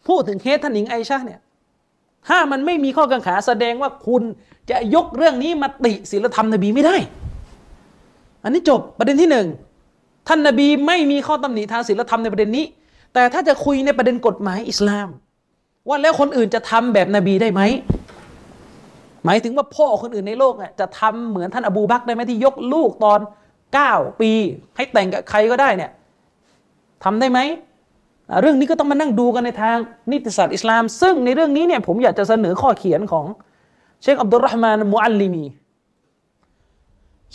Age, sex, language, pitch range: 30-49, male, Thai, 205-280 Hz